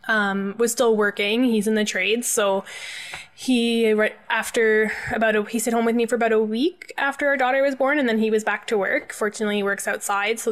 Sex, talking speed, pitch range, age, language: female, 215 wpm, 200-230 Hz, 20-39, English